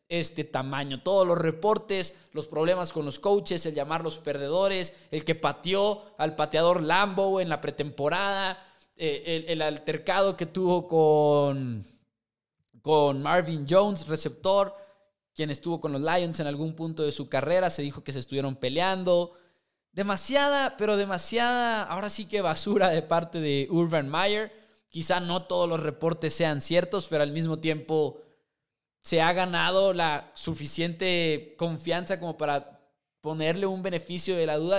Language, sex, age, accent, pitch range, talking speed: English, male, 20-39, Mexican, 155-195 Hz, 150 wpm